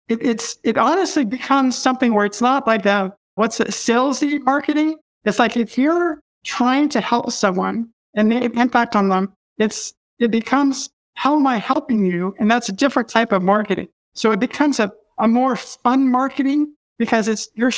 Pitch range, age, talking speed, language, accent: 205-250 Hz, 50-69, 185 wpm, English, American